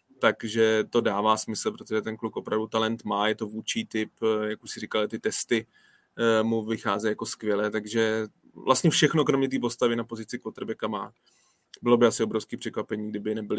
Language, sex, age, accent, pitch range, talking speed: Czech, male, 20-39, native, 110-120 Hz, 180 wpm